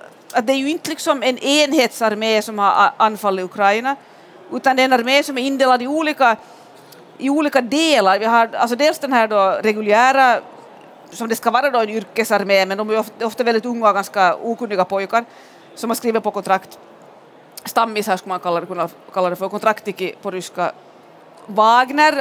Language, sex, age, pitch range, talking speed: Swedish, female, 40-59, 215-270 Hz, 190 wpm